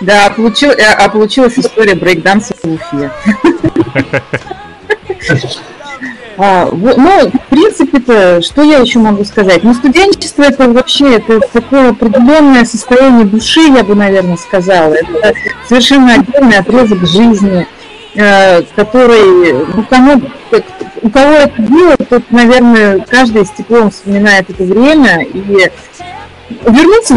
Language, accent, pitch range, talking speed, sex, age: Russian, native, 215-275 Hz, 110 wpm, female, 30-49